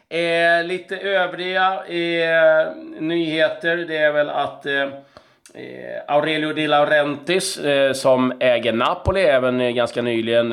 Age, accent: 30-49, native